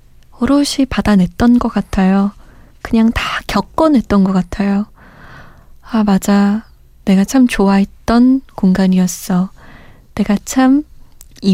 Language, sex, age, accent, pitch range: Korean, female, 20-39, native, 190-235 Hz